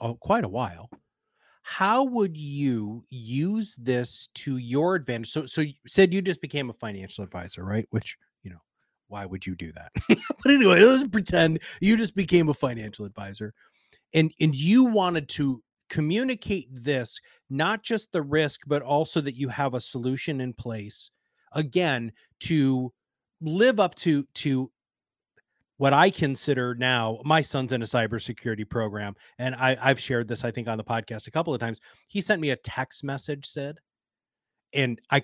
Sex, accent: male, American